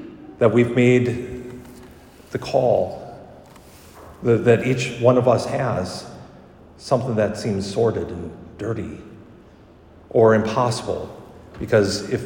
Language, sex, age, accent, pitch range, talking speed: English, male, 50-69, American, 110-140 Hz, 110 wpm